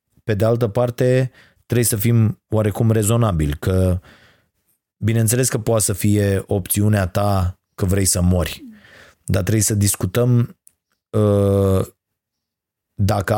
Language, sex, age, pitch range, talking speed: Romanian, male, 30-49, 95-120 Hz, 120 wpm